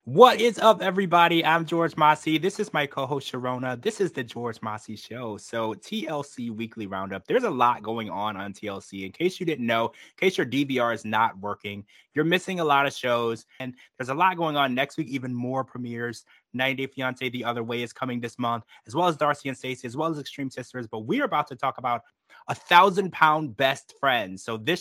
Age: 20-39